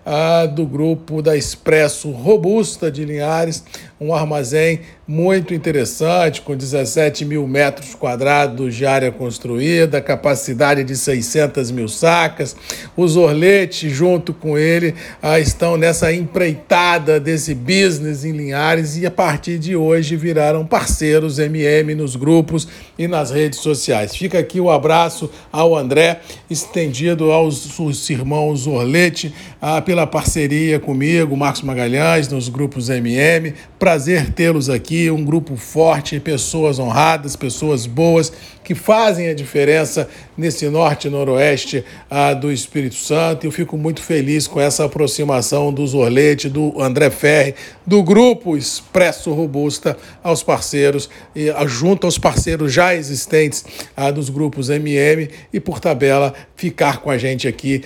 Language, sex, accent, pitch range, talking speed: Portuguese, male, Brazilian, 145-165 Hz, 130 wpm